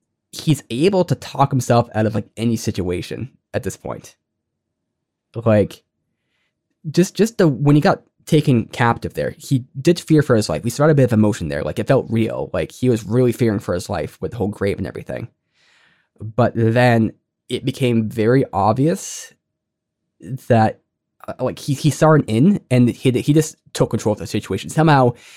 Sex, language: male, English